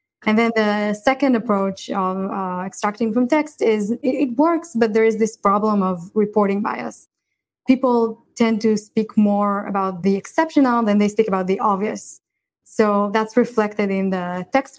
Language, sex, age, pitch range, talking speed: English, female, 20-39, 195-230 Hz, 170 wpm